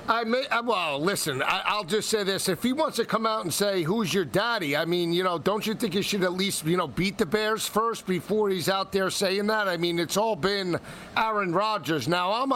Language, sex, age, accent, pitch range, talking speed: English, male, 50-69, American, 185-230 Hz, 245 wpm